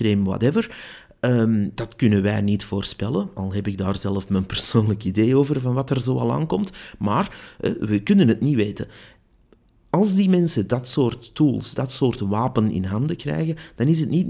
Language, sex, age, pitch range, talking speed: Dutch, male, 30-49, 100-130 Hz, 185 wpm